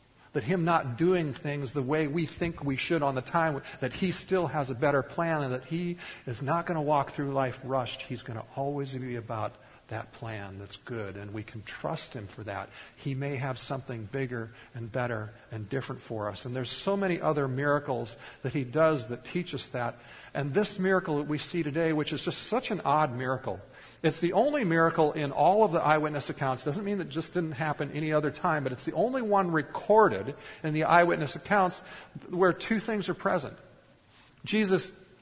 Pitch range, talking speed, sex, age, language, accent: 130-180 Hz, 210 wpm, male, 50-69, English, American